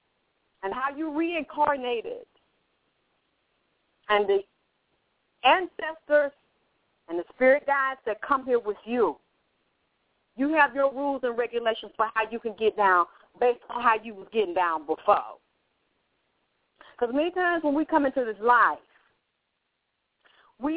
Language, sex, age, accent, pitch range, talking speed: English, female, 50-69, American, 235-315 Hz, 135 wpm